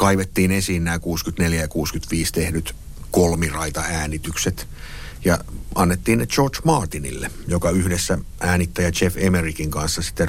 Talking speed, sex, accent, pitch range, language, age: 120 wpm, male, native, 80-95 Hz, Finnish, 50-69